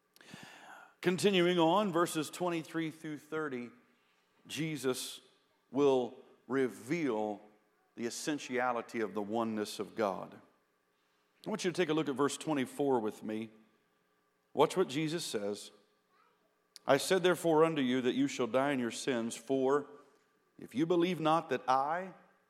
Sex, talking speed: male, 135 wpm